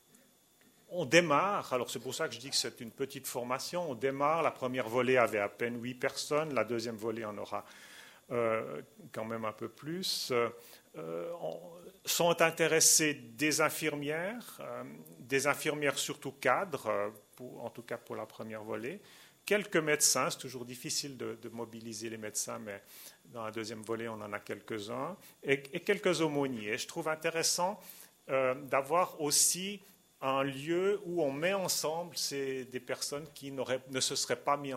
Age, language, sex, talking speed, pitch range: 40-59, French, male, 170 wpm, 115-155 Hz